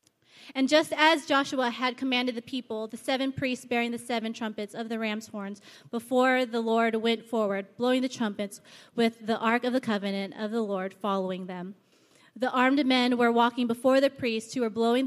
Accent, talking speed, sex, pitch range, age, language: American, 195 wpm, female, 215-265 Hz, 30-49, English